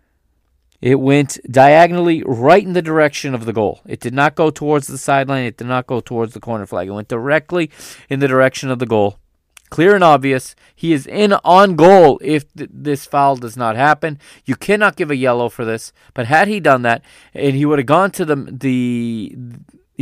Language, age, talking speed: English, 30-49, 205 wpm